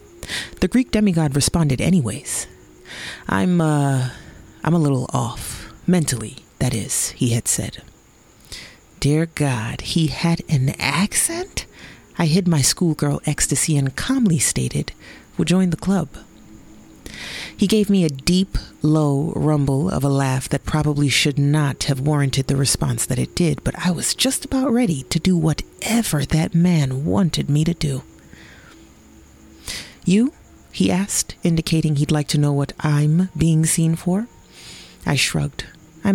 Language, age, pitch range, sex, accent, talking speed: English, 30-49, 140-180 Hz, female, American, 145 wpm